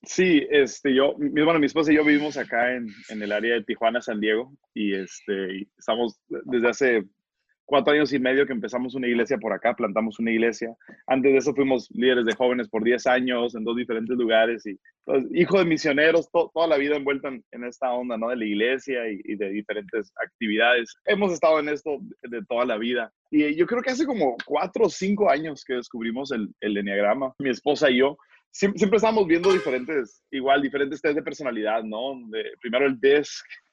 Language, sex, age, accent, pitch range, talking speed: English, male, 20-39, Mexican, 120-170 Hz, 205 wpm